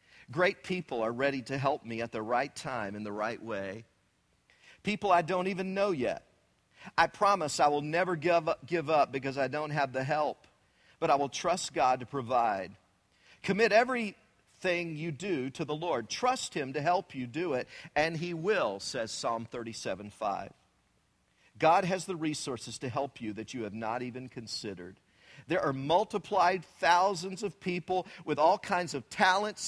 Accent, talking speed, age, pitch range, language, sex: American, 175 wpm, 50-69, 140-210 Hz, English, male